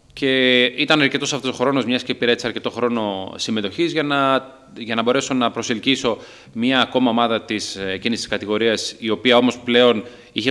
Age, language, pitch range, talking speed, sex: 30-49, Greek, 105-135 Hz, 170 wpm, male